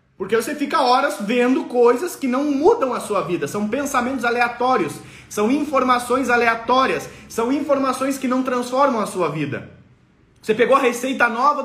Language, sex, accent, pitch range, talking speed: Portuguese, male, Brazilian, 210-270 Hz, 160 wpm